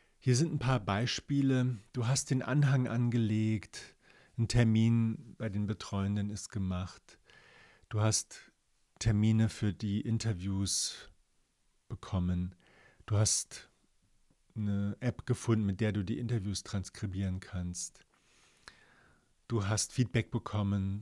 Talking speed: 115 wpm